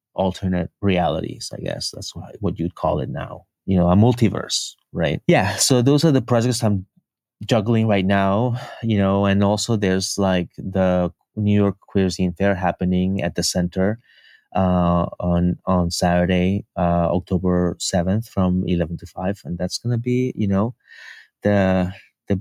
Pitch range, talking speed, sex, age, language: 90-105 Hz, 165 wpm, male, 30-49, English